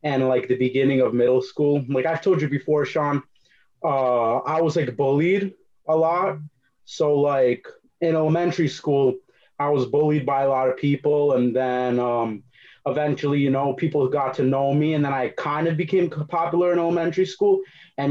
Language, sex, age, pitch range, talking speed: English, male, 30-49, 125-150 Hz, 180 wpm